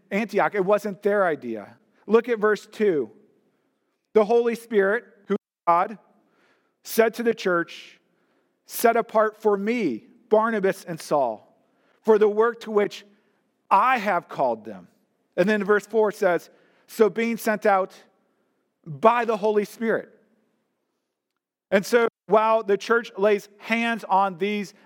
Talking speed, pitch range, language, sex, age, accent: 135 wpm, 185-225 Hz, English, male, 40-59, American